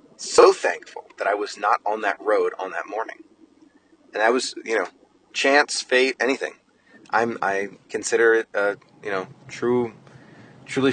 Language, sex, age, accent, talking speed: English, male, 30-49, American, 160 wpm